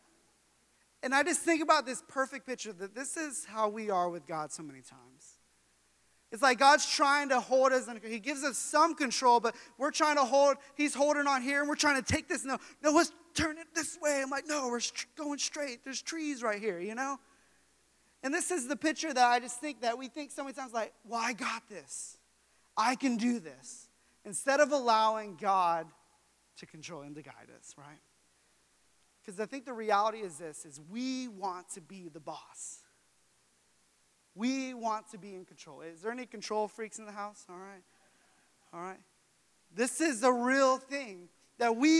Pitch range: 180-275 Hz